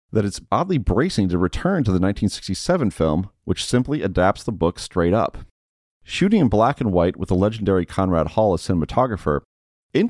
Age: 40-59